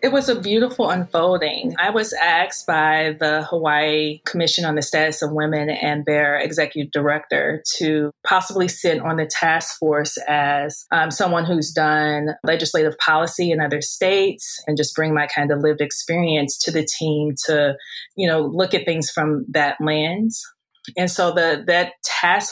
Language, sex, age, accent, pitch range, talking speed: English, female, 20-39, American, 150-170 Hz, 170 wpm